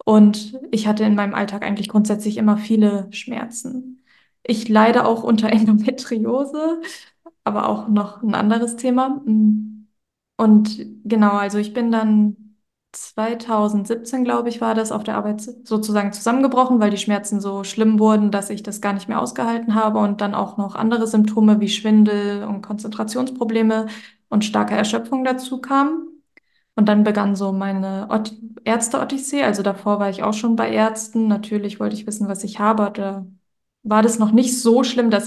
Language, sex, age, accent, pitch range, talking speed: German, female, 20-39, German, 205-230 Hz, 165 wpm